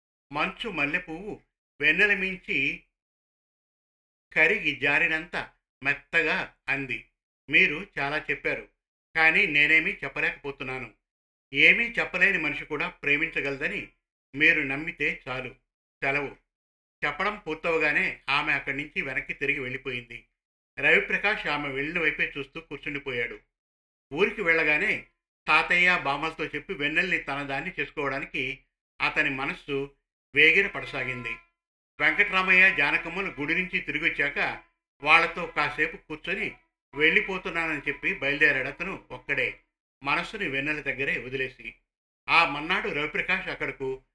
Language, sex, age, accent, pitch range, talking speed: Telugu, male, 50-69, native, 135-170 Hz, 95 wpm